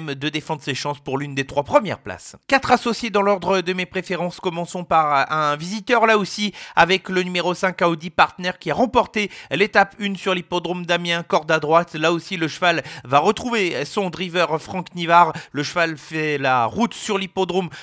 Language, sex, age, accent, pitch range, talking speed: French, male, 40-59, French, 160-200 Hz, 190 wpm